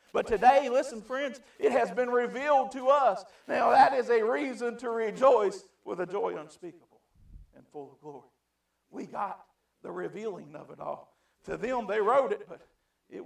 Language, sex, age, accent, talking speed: English, male, 50-69, American, 175 wpm